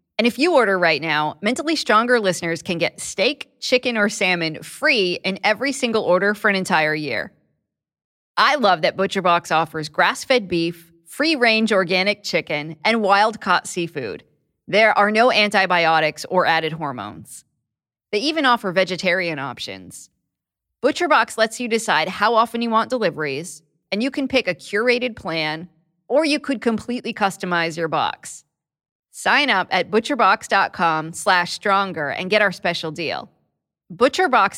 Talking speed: 145 wpm